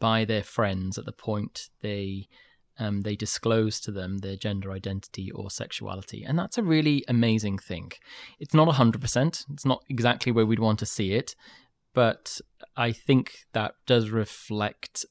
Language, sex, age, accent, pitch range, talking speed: English, male, 20-39, British, 105-125 Hz, 165 wpm